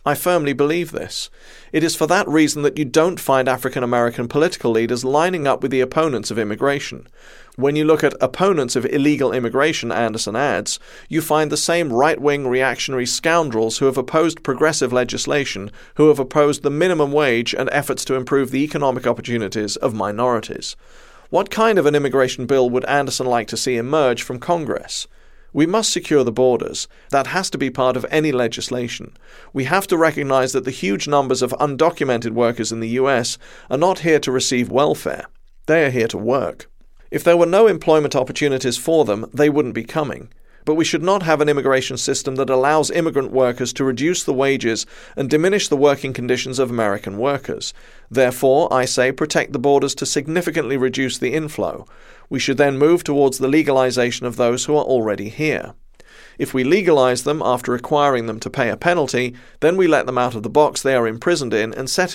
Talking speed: 190 wpm